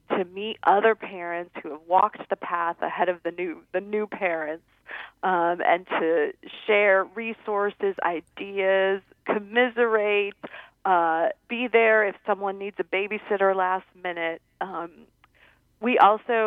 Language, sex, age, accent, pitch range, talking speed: English, female, 40-59, American, 175-220 Hz, 130 wpm